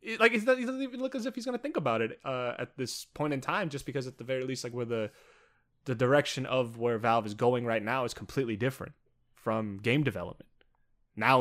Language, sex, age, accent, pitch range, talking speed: English, male, 20-39, American, 115-145 Hz, 225 wpm